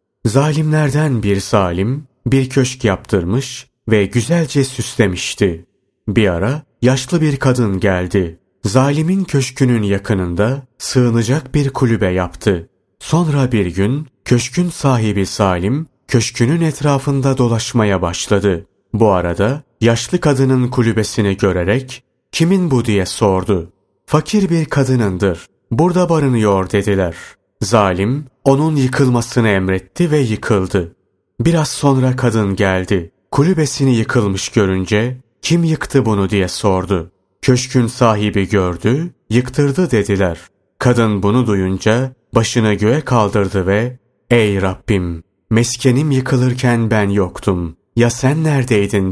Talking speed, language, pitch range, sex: 105 wpm, Turkish, 100-130 Hz, male